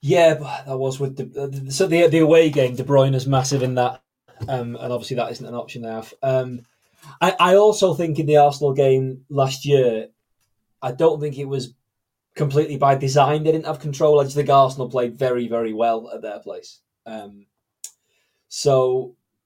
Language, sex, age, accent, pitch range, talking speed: English, male, 20-39, British, 125-150 Hz, 185 wpm